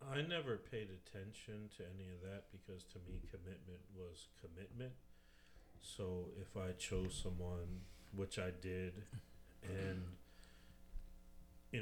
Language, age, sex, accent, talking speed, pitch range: English, 40-59, male, American, 120 wpm, 85-95 Hz